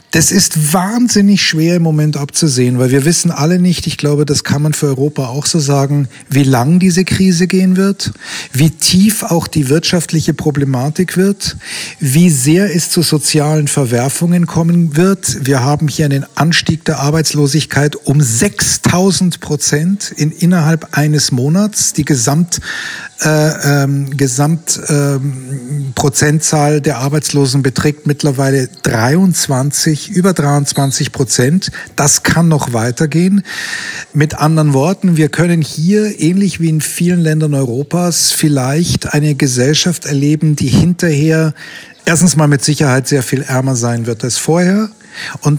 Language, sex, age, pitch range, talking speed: German, male, 40-59, 140-170 Hz, 135 wpm